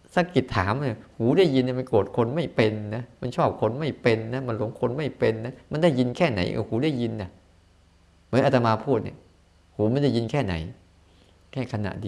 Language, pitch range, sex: Thai, 90-125 Hz, male